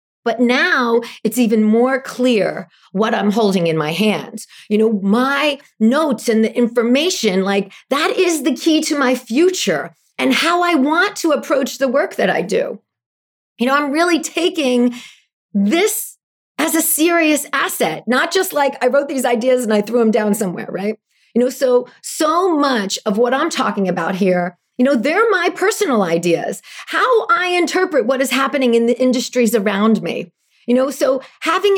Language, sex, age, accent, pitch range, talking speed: English, female, 40-59, American, 220-305 Hz, 175 wpm